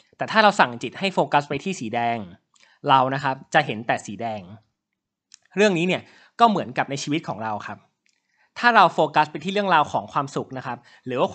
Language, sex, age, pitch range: Thai, male, 20-39, 135-180 Hz